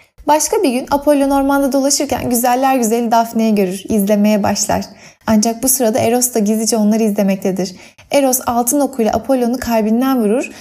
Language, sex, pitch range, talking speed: Turkish, female, 220-265 Hz, 145 wpm